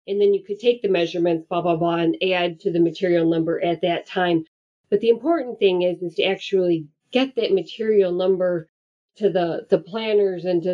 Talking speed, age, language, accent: 205 wpm, 40-59, English, American